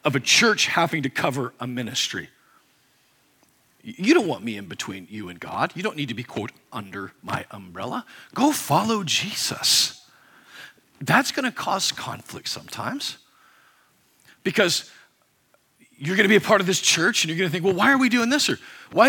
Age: 40-59